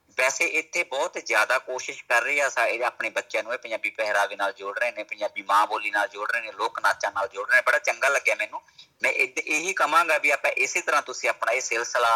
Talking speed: 235 wpm